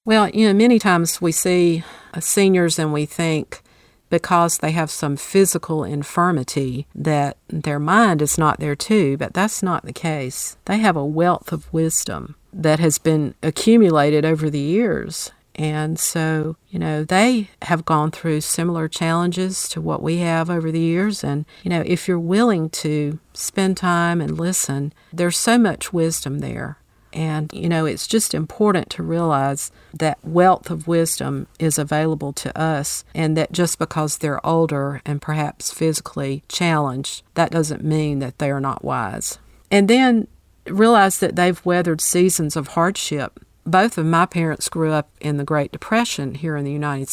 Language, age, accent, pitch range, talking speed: English, 50-69, American, 150-180 Hz, 170 wpm